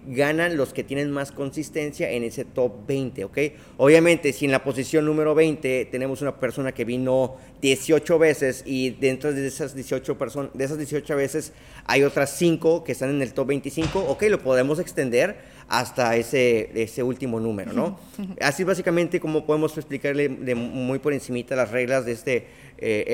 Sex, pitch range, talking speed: male, 120-145 Hz, 180 wpm